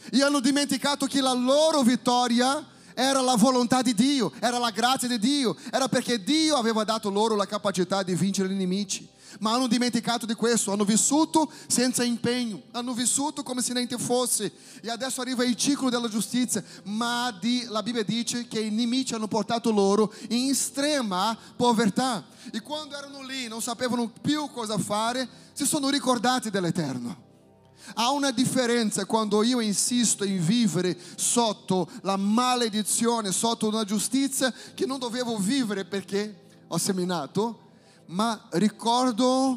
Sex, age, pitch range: male, 30-49, 200-250 Hz